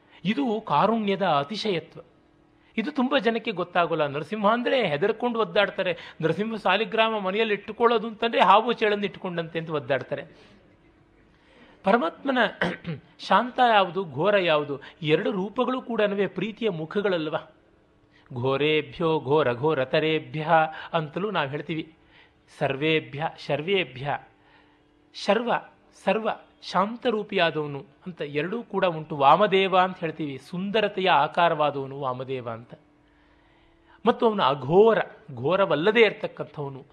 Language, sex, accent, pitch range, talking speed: Kannada, male, native, 150-210 Hz, 95 wpm